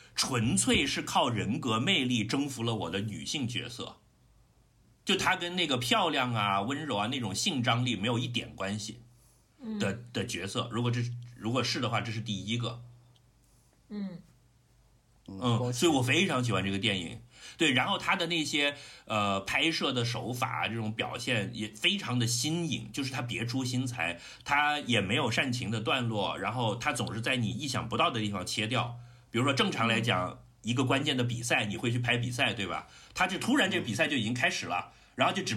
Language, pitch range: Chinese, 115-130 Hz